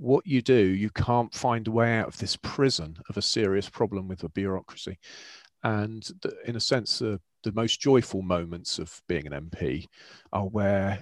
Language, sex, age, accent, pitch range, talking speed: English, male, 40-59, British, 95-120 Hz, 185 wpm